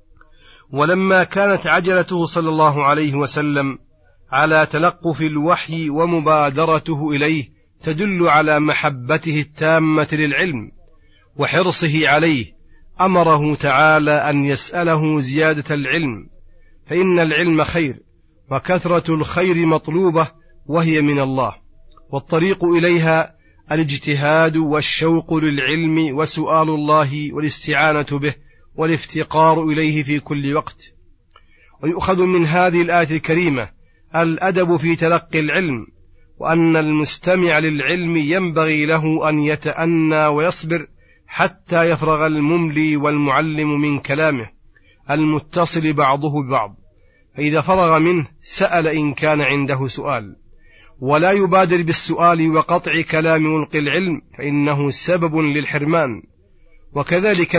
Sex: male